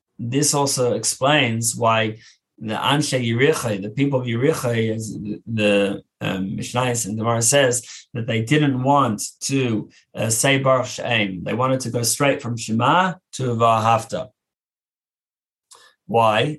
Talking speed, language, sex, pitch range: 130 wpm, English, male, 110-140 Hz